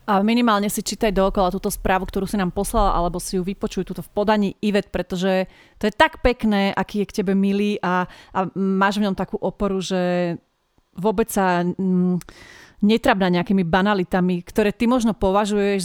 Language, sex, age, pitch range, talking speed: Slovak, female, 30-49, 185-220 Hz, 180 wpm